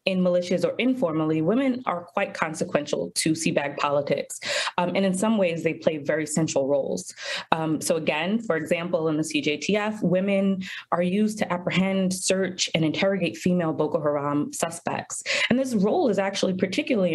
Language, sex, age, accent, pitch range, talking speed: English, female, 20-39, American, 165-200 Hz, 165 wpm